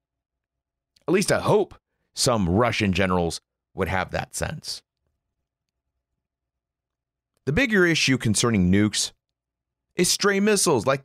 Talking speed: 110 wpm